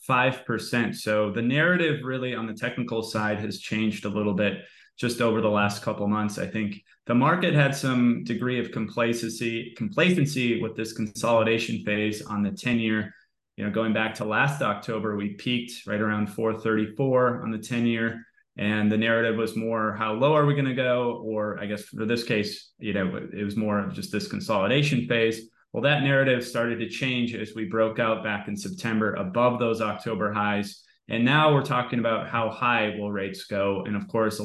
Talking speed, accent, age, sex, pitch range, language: 195 wpm, American, 20-39, male, 105-120 Hz, English